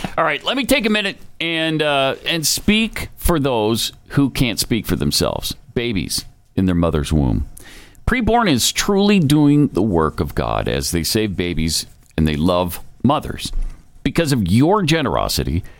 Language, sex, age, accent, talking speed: English, male, 50-69, American, 165 wpm